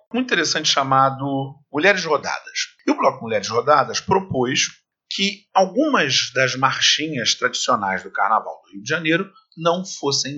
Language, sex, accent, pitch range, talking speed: Portuguese, male, Brazilian, 125-185 Hz, 140 wpm